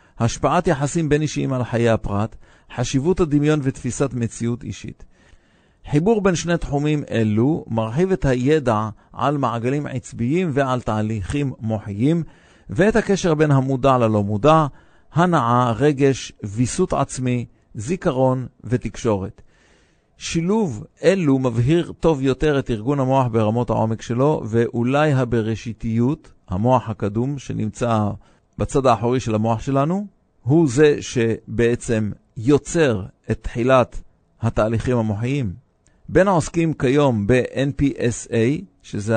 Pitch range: 110-145 Hz